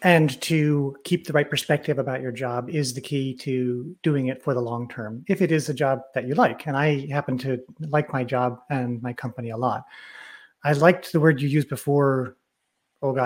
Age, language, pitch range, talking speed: 30-49, English, 130-155 Hz, 215 wpm